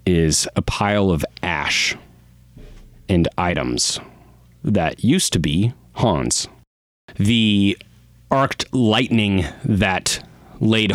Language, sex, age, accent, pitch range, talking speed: English, male, 30-49, American, 80-110 Hz, 95 wpm